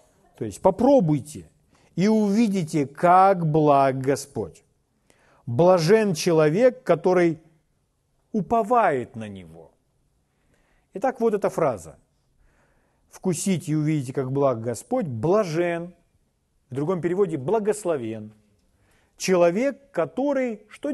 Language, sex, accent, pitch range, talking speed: Russian, male, native, 155-220 Hz, 90 wpm